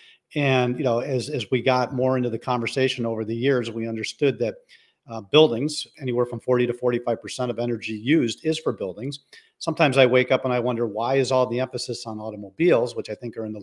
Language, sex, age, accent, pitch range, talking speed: English, male, 50-69, American, 115-145 Hz, 225 wpm